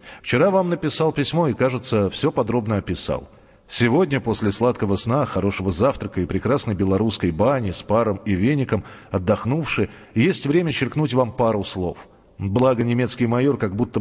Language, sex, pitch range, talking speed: Russian, male, 105-145 Hz, 150 wpm